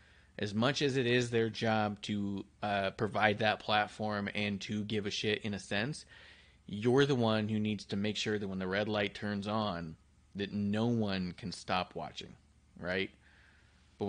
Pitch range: 100-125 Hz